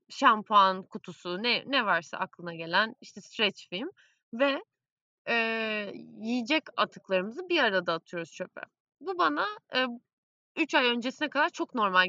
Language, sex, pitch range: Turkish, female, 190-270 Hz